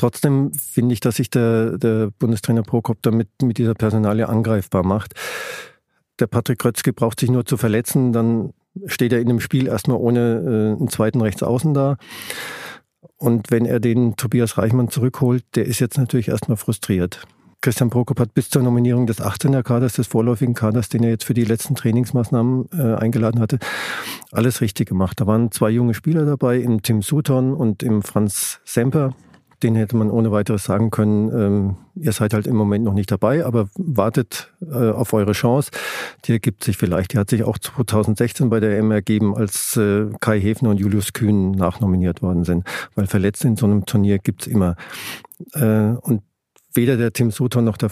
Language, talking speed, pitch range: German, 185 wpm, 105-125 Hz